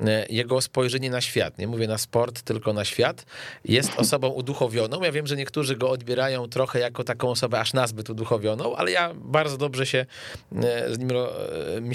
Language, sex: Polish, male